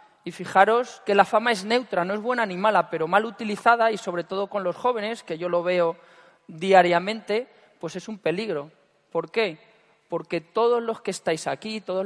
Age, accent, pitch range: 40-59, Spanish, 180-235 Hz